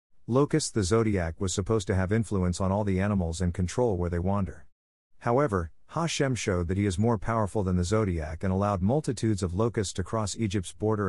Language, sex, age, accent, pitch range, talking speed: English, male, 50-69, American, 90-110 Hz, 200 wpm